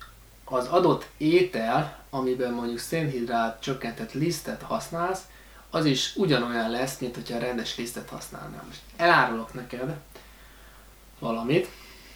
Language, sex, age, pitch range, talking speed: Hungarian, male, 20-39, 120-145 Hz, 110 wpm